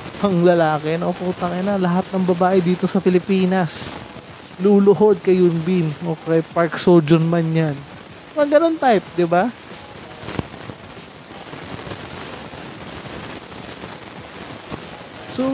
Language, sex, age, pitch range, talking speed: Filipino, male, 20-39, 155-205 Hz, 95 wpm